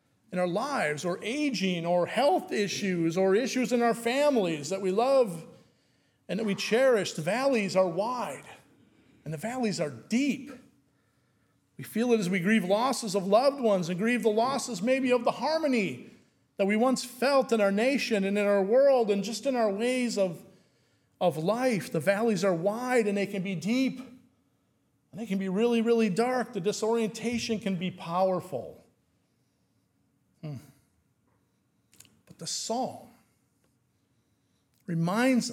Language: English